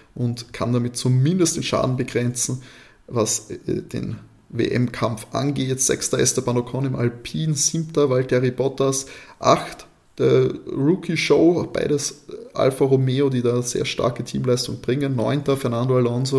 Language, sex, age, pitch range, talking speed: German, male, 20-39, 110-130 Hz, 130 wpm